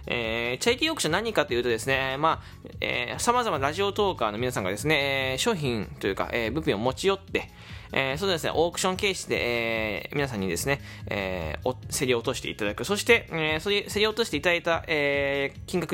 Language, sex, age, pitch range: Japanese, male, 20-39, 125-215 Hz